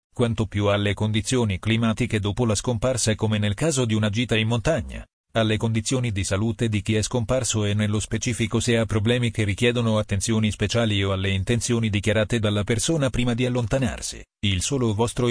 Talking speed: 180 wpm